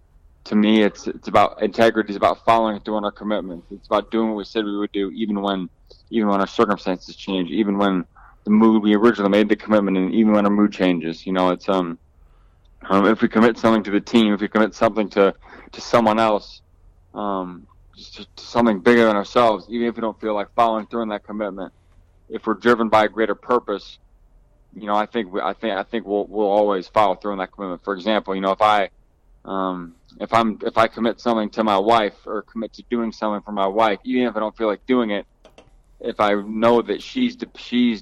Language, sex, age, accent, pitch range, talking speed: English, male, 20-39, American, 95-110 Hz, 230 wpm